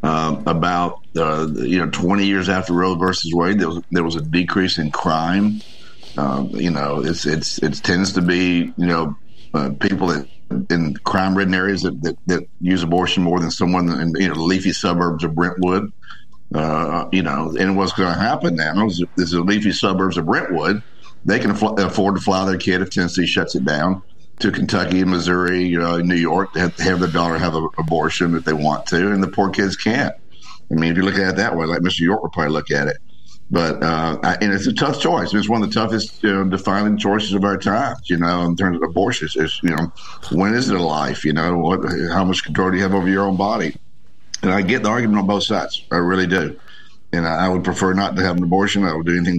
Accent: American